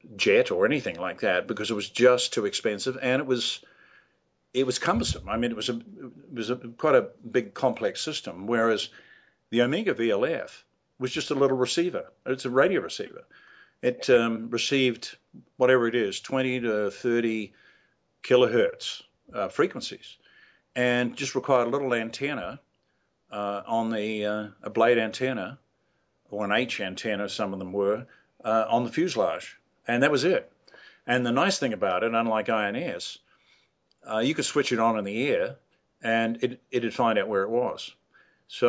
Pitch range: 110-130 Hz